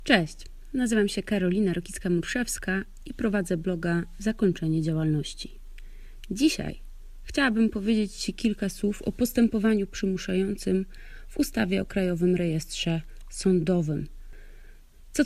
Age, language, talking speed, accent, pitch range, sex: 30-49, Polish, 100 wpm, native, 175-220 Hz, female